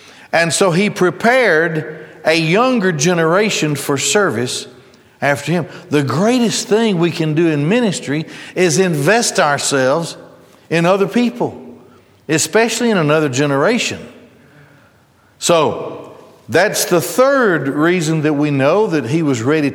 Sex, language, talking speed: male, English, 125 wpm